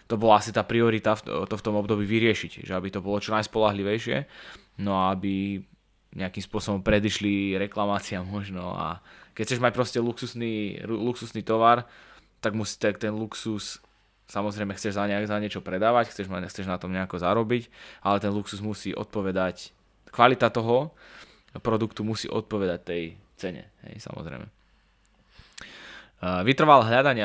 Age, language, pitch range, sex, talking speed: 20-39, English, 100-115 Hz, male, 140 wpm